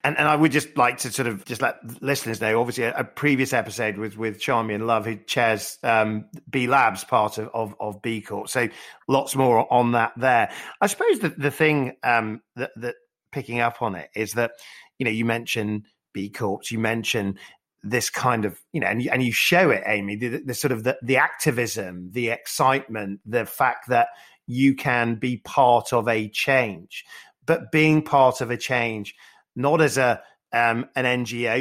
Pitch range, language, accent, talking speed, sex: 115-140 Hz, English, British, 200 wpm, male